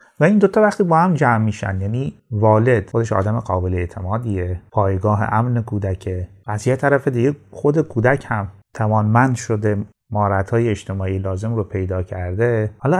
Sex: male